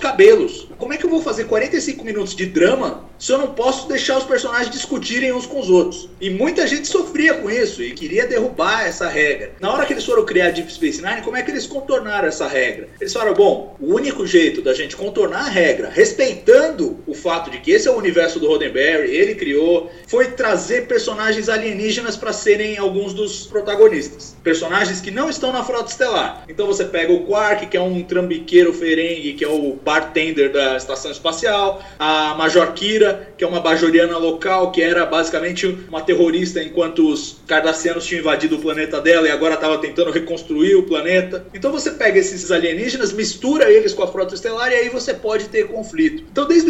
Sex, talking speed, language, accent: male, 200 wpm, Portuguese, Brazilian